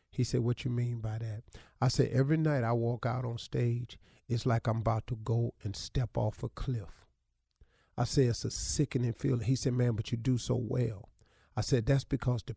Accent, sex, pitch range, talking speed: American, male, 110-130 Hz, 220 wpm